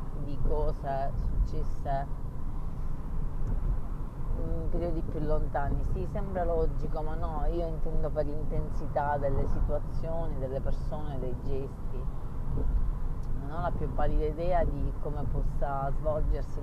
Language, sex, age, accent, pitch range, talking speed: Italian, female, 30-49, native, 100-150 Hz, 115 wpm